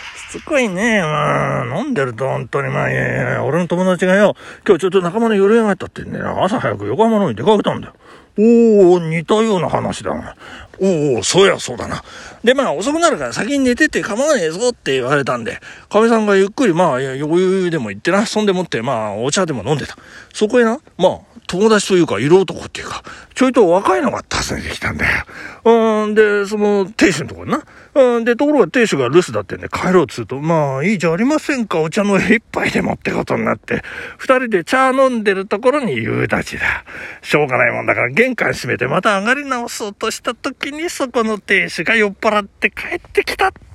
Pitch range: 185-245 Hz